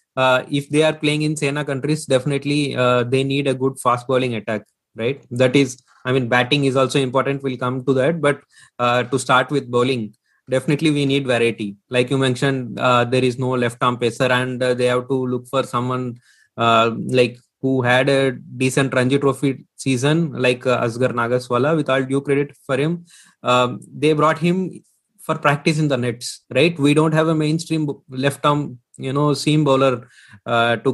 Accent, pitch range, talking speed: Indian, 125-150 Hz, 195 wpm